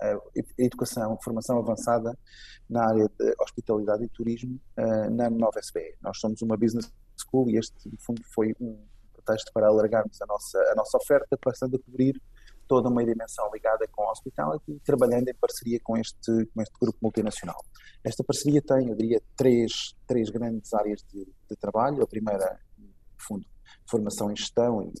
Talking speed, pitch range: 170 wpm, 105-125 Hz